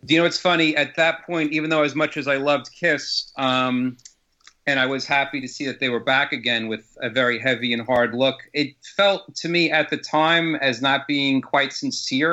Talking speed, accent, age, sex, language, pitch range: 230 wpm, American, 40-59, male, English, 120-140 Hz